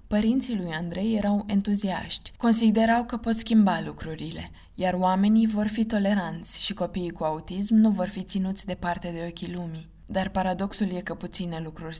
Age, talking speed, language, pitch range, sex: 20-39, 170 wpm, Romanian, 175-205 Hz, female